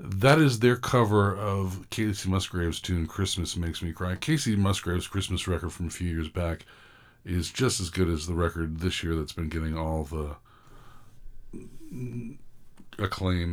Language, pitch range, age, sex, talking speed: English, 85-110 Hz, 50-69, male, 160 wpm